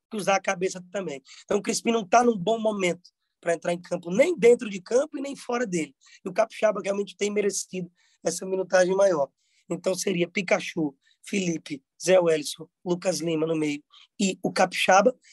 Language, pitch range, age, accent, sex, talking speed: Portuguese, 170-215 Hz, 20-39, Brazilian, male, 185 wpm